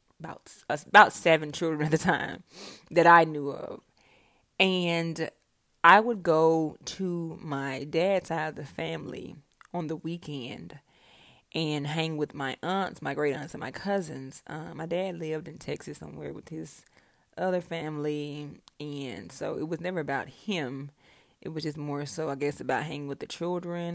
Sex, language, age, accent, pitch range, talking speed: female, English, 20-39, American, 145-170 Hz, 170 wpm